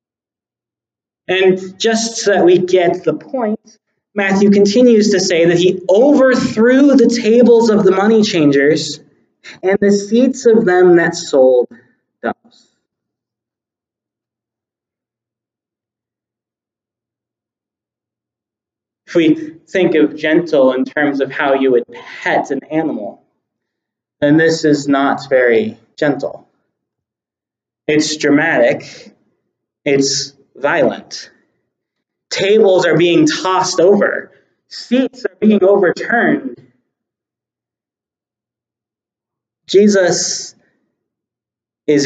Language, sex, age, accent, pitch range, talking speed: English, male, 30-49, American, 155-220 Hz, 90 wpm